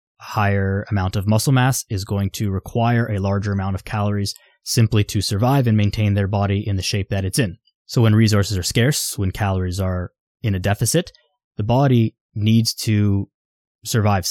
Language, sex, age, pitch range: English, male, 20-39, 95-110 Hz